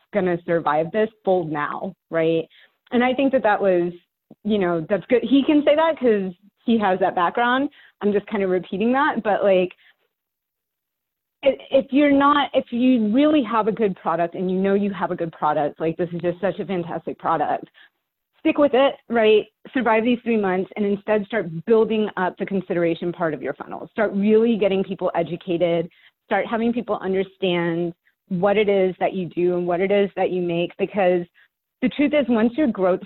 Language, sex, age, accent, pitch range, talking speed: English, female, 30-49, American, 175-230 Hz, 195 wpm